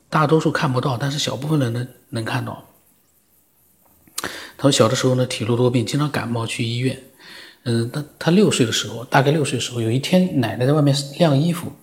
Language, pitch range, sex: Chinese, 125-155 Hz, male